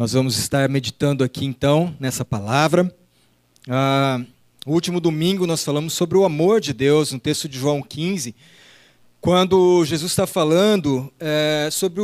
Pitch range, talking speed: 135-185 Hz, 150 wpm